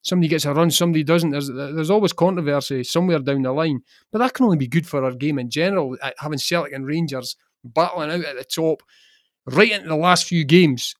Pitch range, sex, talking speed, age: 135-170 Hz, male, 220 wpm, 30-49